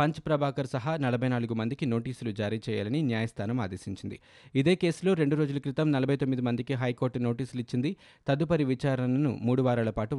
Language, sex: Telugu, male